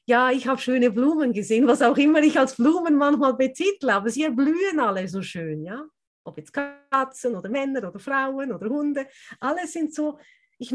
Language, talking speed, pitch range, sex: German, 190 wpm, 195-265 Hz, female